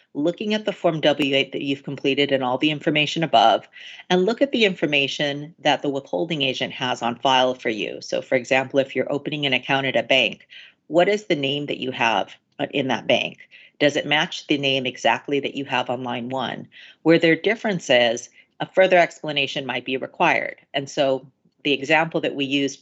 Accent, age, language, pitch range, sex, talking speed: American, 40-59, English, 130-160 Hz, female, 200 wpm